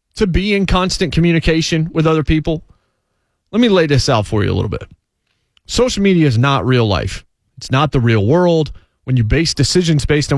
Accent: American